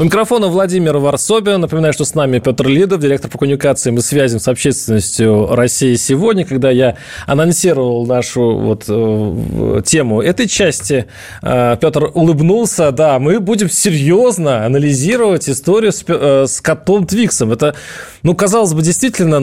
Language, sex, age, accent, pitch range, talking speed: Russian, male, 20-39, native, 125-170 Hz, 130 wpm